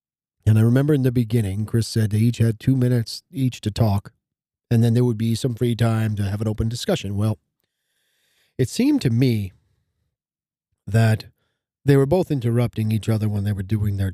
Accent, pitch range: American, 105-125 Hz